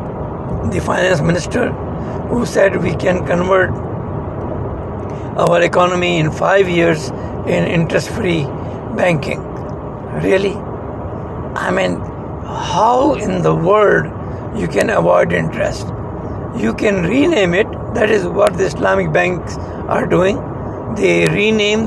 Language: English